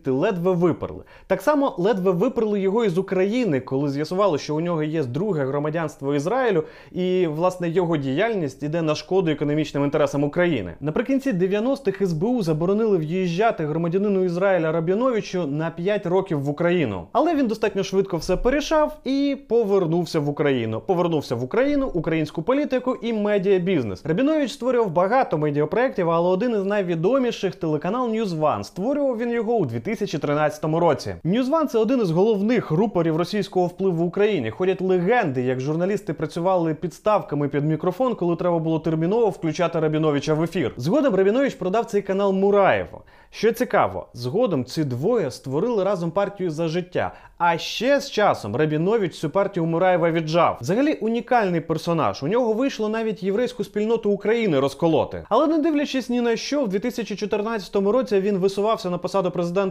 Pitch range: 160-220 Hz